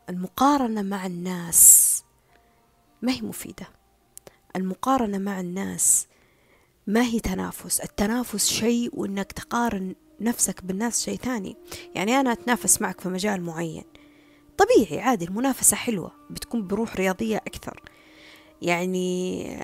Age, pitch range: 20-39, 180-235 Hz